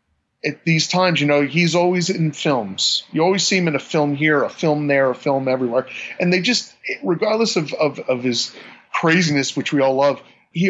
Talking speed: 200 wpm